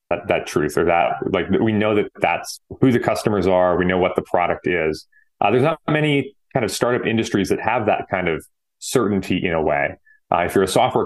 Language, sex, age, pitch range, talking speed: English, male, 30-49, 85-110 Hz, 230 wpm